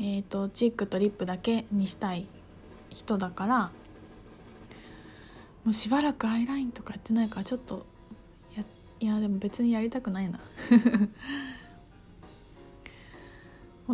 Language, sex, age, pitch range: Japanese, female, 20-39, 200-270 Hz